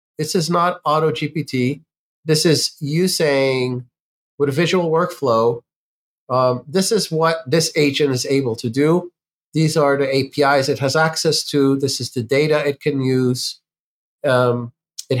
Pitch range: 125-150 Hz